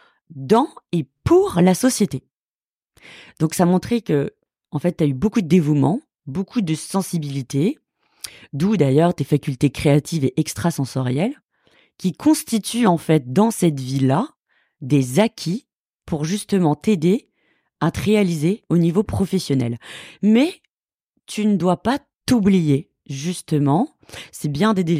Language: French